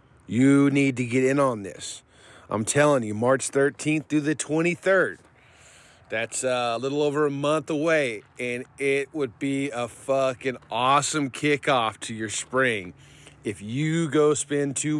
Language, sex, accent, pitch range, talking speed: English, male, American, 115-150 Hz, 150 wpm